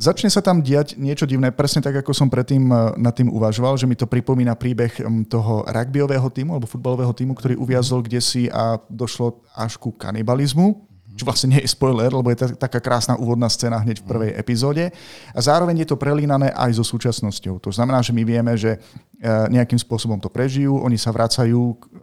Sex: male